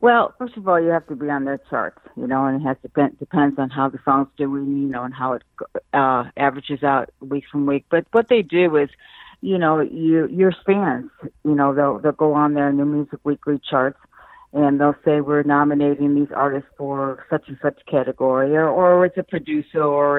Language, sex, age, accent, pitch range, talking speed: English, female, 50-69, American, 135-155 Hz, 220 wpm